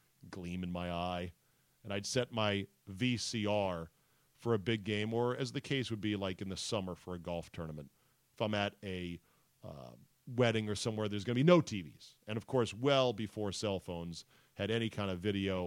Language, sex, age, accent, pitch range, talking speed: English, male, 40-59, American, 100-130 Hz, 200 wpm